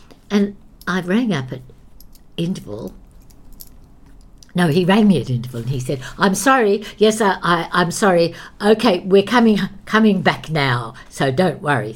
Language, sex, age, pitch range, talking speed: English, female, 60-79, 125-180 Hz, 155 wpm